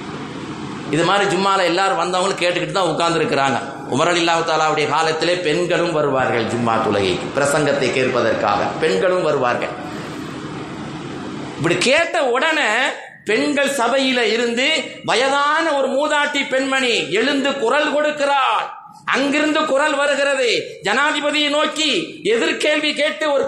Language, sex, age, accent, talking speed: Tamil, male, 30-49, native, 50 wpm